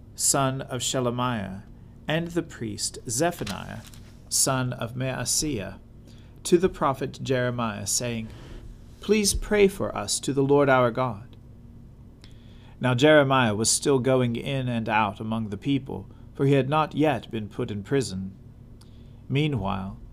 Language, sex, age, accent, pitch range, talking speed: English, male, 40-59, American, 115-140 Hz, 135 wpm